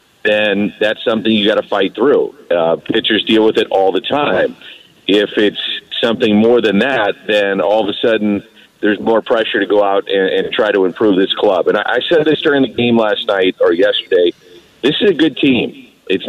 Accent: American